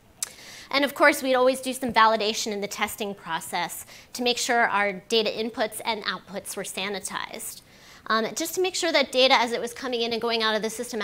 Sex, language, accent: female, English, American